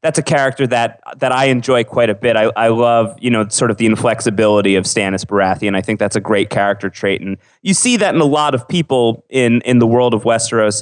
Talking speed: 245 wpm